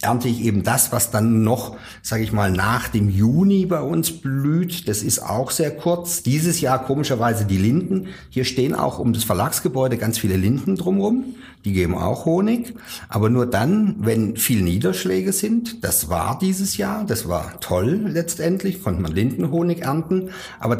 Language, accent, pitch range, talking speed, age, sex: German, German, 105-165 Hz, 175 wpm, 50-69, male